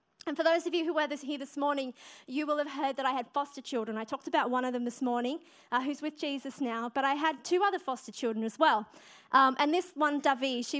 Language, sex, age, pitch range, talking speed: English, female, 30-49, 240-300 Hz, 260 wpm